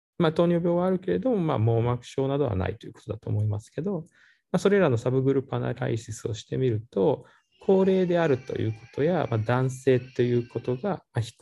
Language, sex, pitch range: Japanese, male, 110-175 Hz